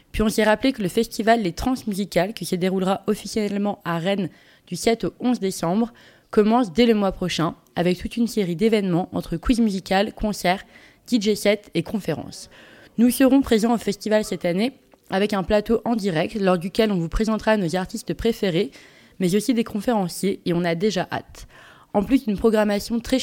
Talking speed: 190 wpm